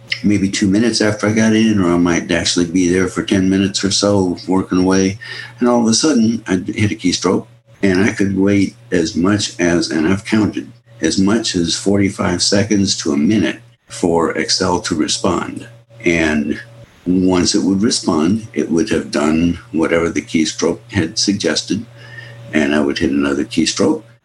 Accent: American